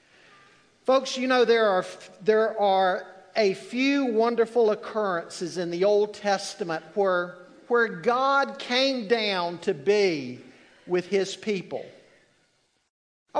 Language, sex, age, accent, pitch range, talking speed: English, male, 50-69, American, 210-270 Hz, 115 wpm